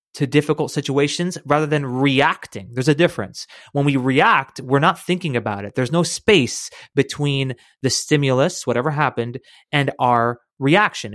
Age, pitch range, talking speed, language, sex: 30-49, 125-155 Hz, 150 wpm, English, male